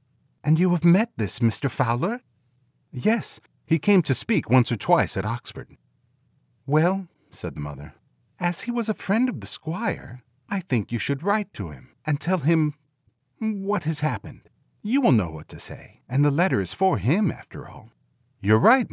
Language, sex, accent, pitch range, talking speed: English, male, American, 100-155 Hz, 185 wpm